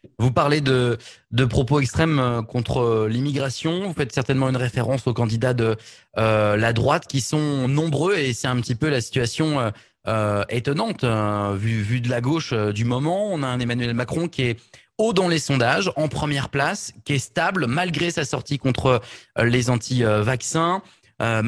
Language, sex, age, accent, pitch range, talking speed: French, male, 20-39, French, 120-150 Hz, 180 wpm